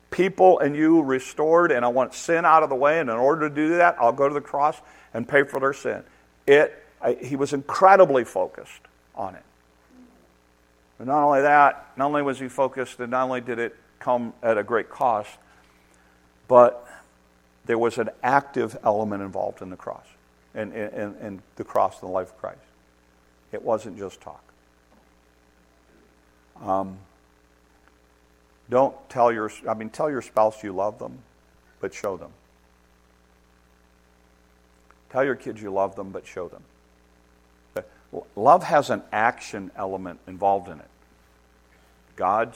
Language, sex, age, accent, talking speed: English, male, 50-69, American, 160 wpm